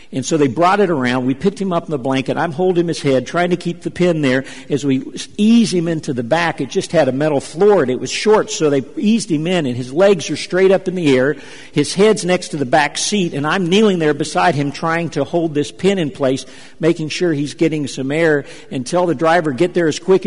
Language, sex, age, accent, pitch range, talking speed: English, male, 50-69, American, 140-180 Hz, 260 wpm